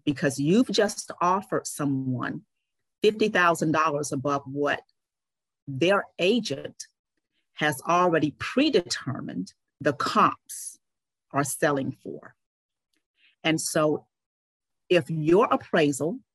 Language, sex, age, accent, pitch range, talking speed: English, female, 40-59, American, 150-195 Hz, 85 wpm